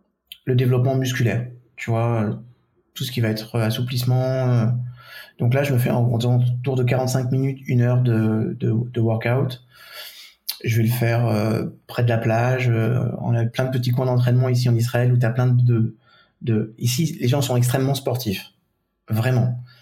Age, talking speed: 20-39, 180 wpm